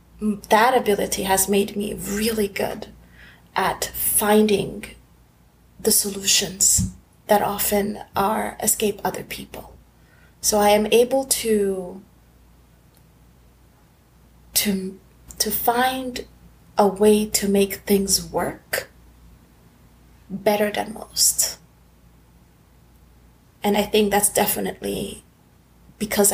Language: English